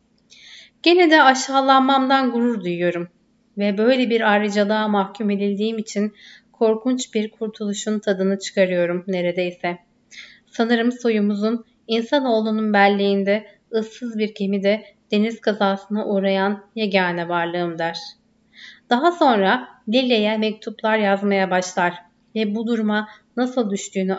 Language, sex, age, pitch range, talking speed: Turkish, female, 30-49, 195-230 Hz, 105 wpm